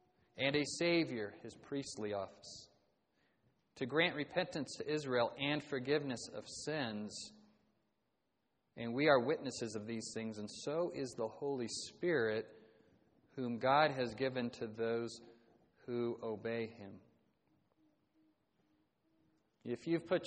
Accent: American